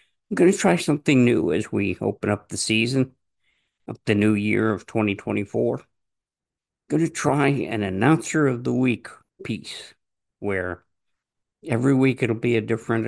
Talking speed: 160 wpm